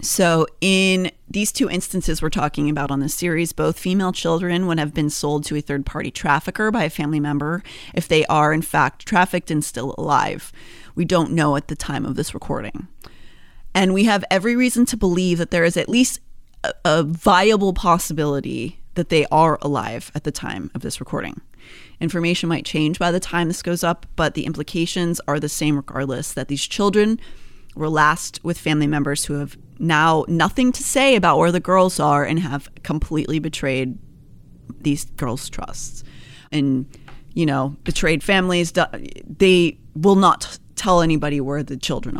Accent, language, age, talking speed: American, English, 30-49, 180 wpm